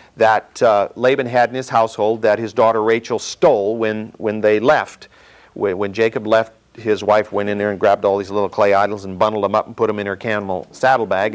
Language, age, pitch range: English, 50-69, 110-180 Hz